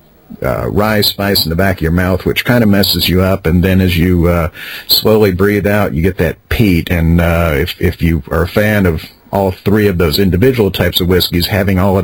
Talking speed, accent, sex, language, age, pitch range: 235 wpm, American, male, English, 50-69, 85-100 Hz